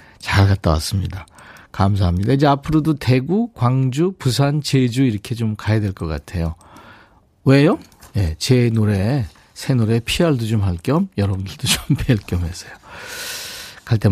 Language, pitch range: Korean, 110-155 Hz